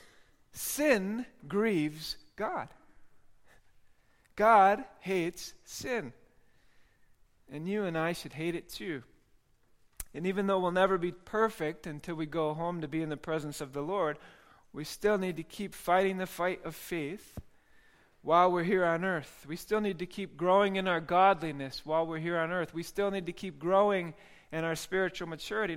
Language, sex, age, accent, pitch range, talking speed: English, male, 40-59, American, 160-205 Hz, 170 wpm